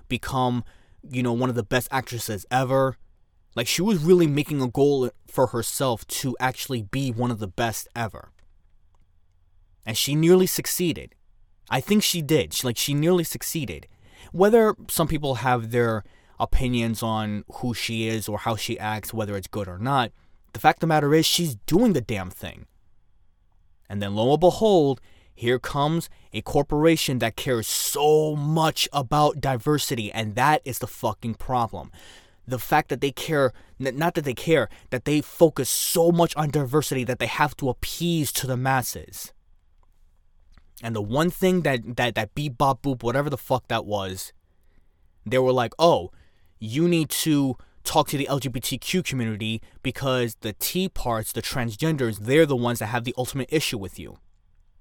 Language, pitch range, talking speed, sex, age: English, 105-150 Hz, 170 wpm, male, 20-39